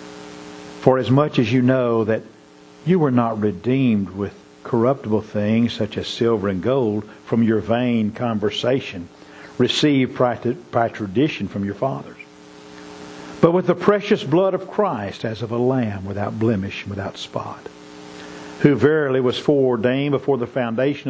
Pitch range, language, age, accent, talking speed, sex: 85-130 Hz, English, 50-69, American, 150 wpm, male